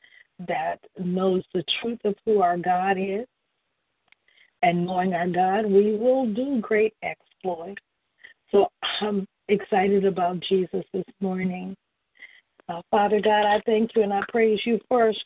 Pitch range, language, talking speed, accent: 190-220 Hz, English, 140 wpm, American